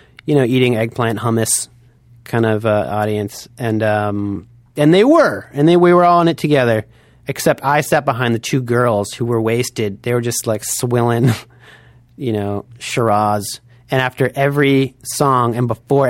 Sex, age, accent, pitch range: male, 30-49, American, 115-140 Hz